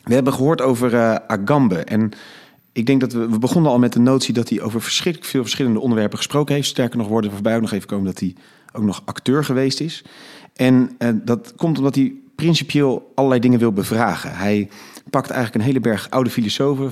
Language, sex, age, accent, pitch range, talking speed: Dutch, male, 40-59, Dutch, 105-135 Hz, 215 wpm